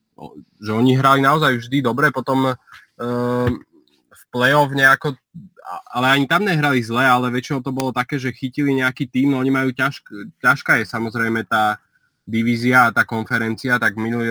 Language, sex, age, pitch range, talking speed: Slovak, male, 20-39, 110-125 Hz, 160 wpm